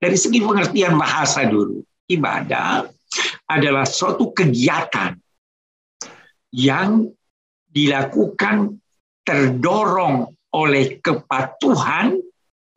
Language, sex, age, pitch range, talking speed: Indonesian, male, 60-79, 135-185 Hz, 65 wpm